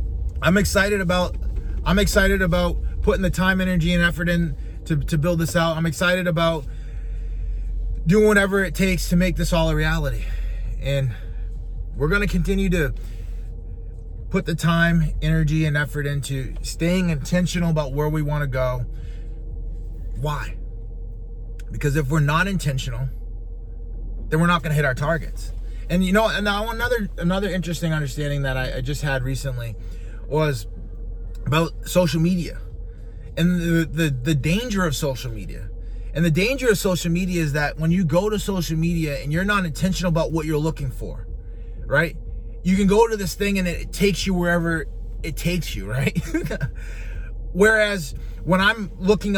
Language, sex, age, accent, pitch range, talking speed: English, male, 20-39, American, 115-180 Hz, 165 wpm